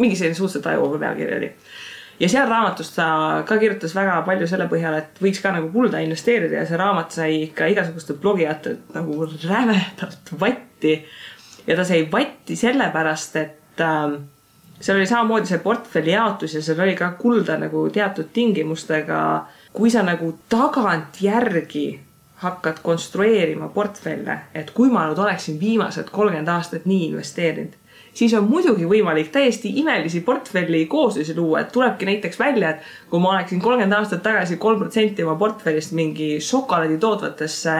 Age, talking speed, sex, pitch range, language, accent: 20-39, 150 wpm, female, 160-215 Hz, English, Finnish